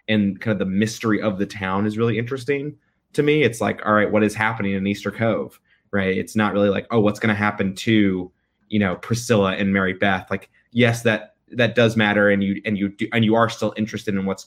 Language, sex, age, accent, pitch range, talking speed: English, male, 20-39, American, 100-115 Hz, 240 wpm